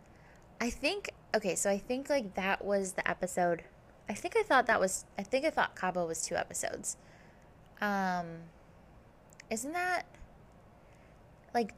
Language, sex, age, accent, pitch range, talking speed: English, female, 20-39, American, 170-220 Hz, 150 wpm